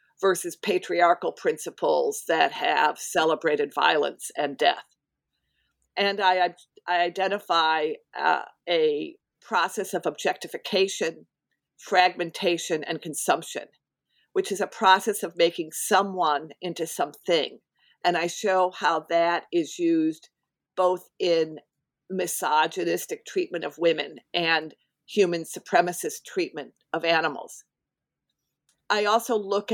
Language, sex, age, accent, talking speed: English, female, 50-69, American, 105 wpm